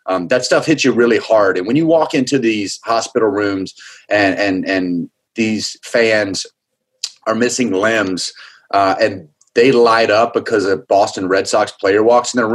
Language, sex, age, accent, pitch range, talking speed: English, male, 30-49, American, 100-140 Hz, 175 wpm